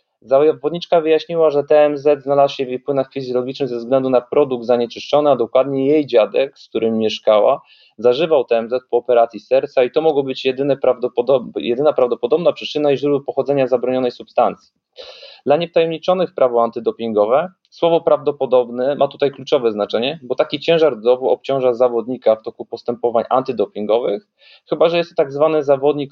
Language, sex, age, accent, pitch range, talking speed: Polish, male, 20-39, native, 115-145 Hz, 155 wpm